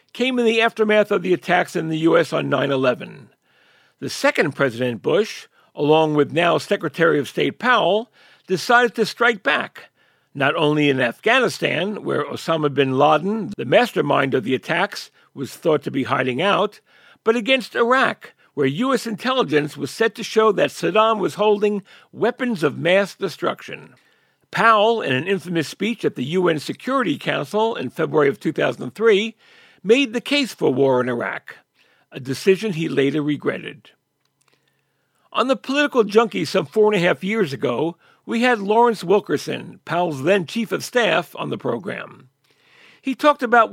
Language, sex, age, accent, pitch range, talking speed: English, male, 60-79, American, 160-230 Hz, 160 wpm